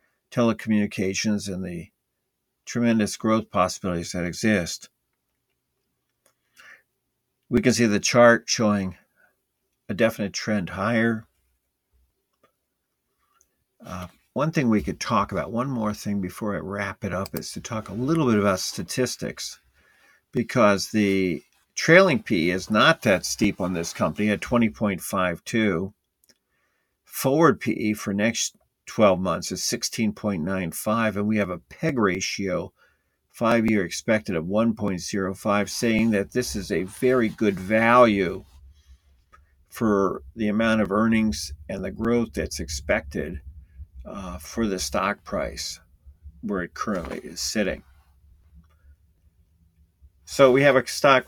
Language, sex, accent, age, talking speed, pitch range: English, male, American, 50-69, 125 wpm, 80-110 Hz